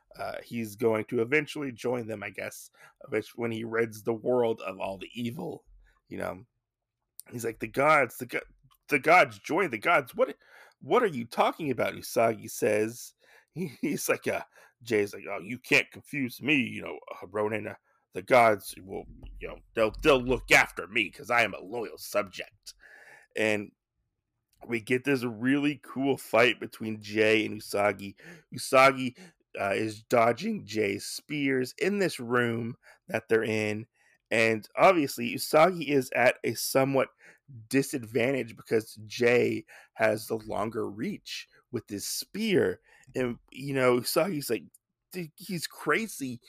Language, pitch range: English, 110-135 Hz